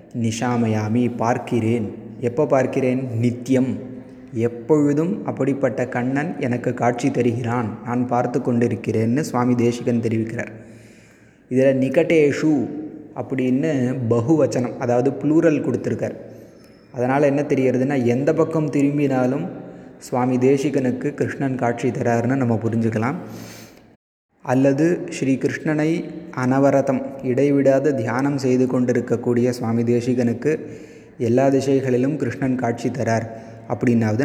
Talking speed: 90 wpm